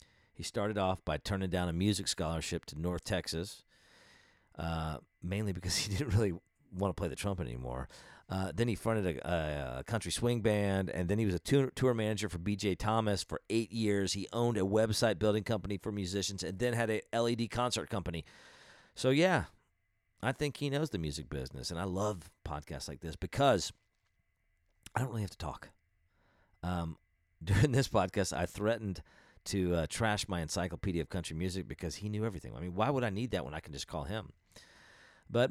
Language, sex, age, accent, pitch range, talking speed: English, male, 40-59, American, 85-110 Hz, 195 wpm